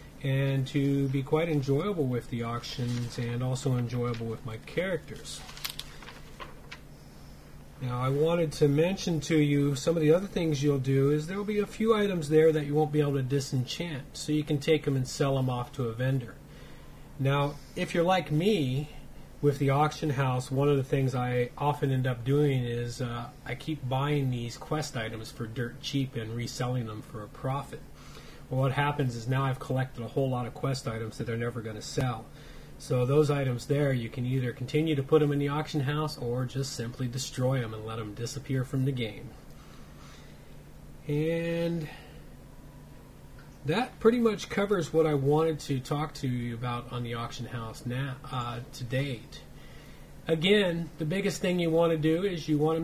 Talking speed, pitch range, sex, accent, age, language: 190 wpm, 125-155 Hz, male, American, 30-49, English